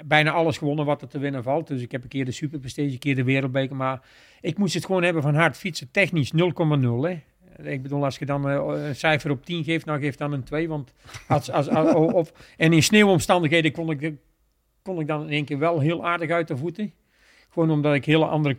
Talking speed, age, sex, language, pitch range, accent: 245 wpm, 50-69, male, Dutch, 130-155 Hz, Dutch